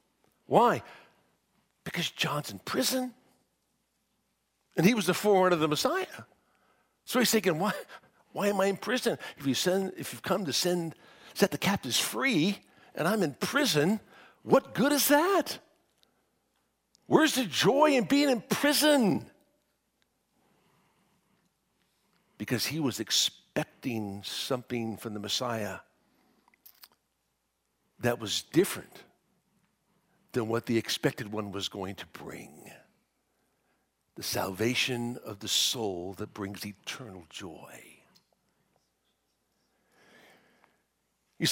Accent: American